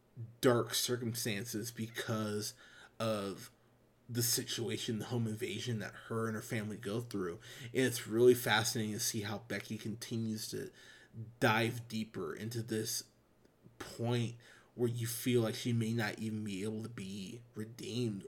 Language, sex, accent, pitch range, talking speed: English, male, American, 110-120 Hz, 145 wpm